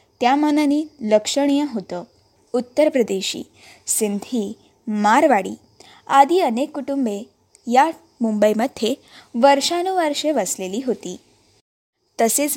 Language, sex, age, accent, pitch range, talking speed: Marathi, female, 20-39, native, 220-295 Hz, 80 wpm